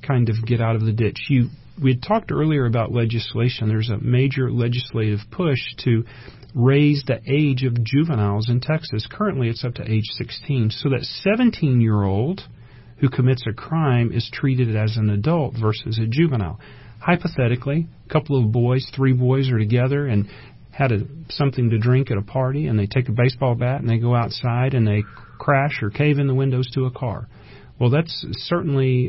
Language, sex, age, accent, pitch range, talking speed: English, male, 40-59, American, 115-140 Hz, 180 wpm